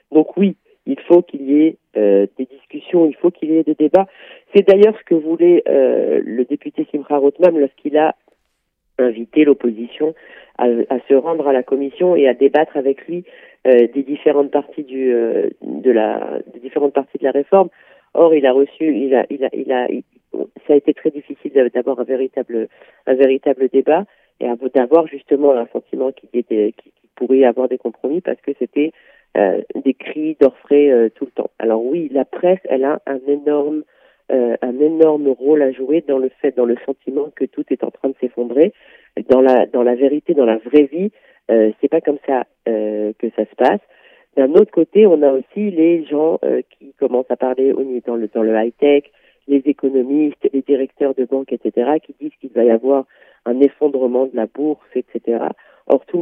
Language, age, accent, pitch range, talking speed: German, 40-59, French, 130-155 Hz, 205 wpm